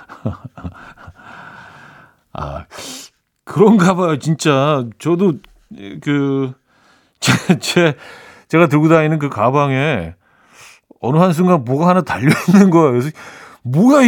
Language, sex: Korean, male